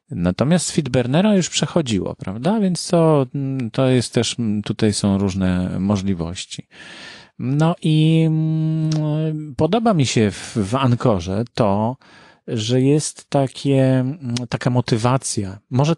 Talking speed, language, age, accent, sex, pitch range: 115 wpm, Polish, 40-59, native, male, 100-135 Hz